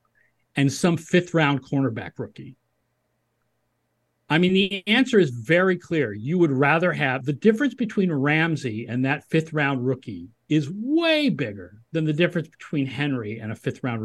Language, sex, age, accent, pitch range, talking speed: English, male, 50-69, American, 140-200 Hz, 160 wpm